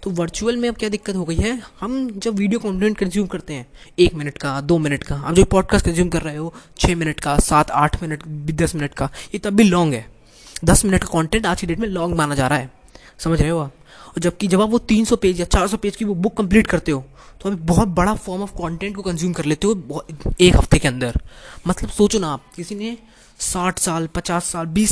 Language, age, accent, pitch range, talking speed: Hindi, 20-39, native, 155-200 Hz, 255 wpm